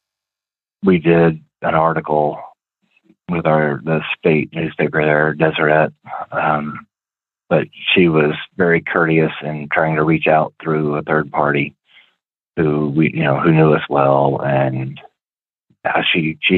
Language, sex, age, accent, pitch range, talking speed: English, male, 40-59, American, 75-90 Hz, 140 wpm